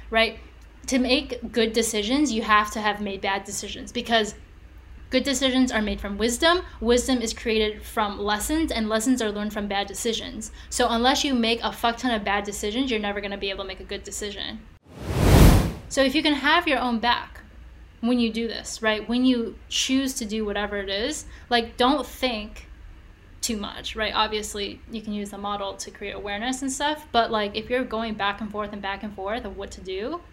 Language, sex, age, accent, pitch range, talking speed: English, female, 10-29, American, 205-245 Hz, 210 wpm